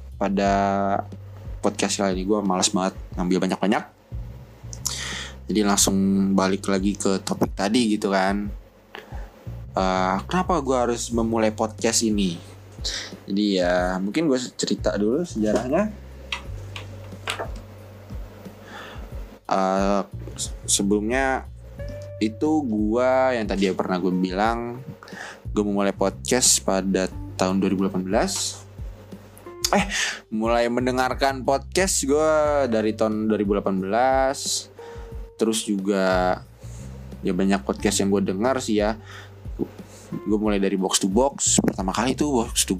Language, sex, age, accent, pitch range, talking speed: Indonesian, male, 20-39, native, 95-110 Hz, 105 wpm